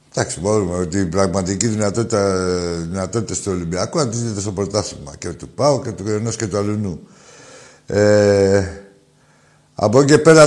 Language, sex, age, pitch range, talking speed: Greek, male, 60-79, 95-130 Hz, 145 wpm